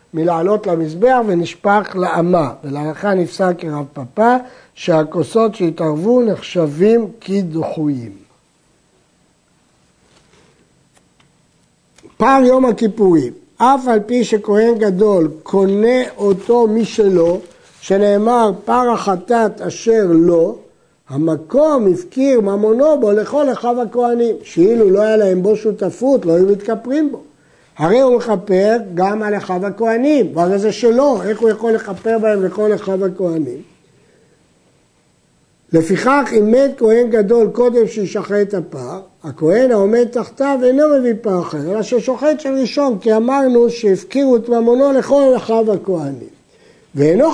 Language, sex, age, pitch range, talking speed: Hebrew, male, 60-79, 185-245 Hz, 120 wpm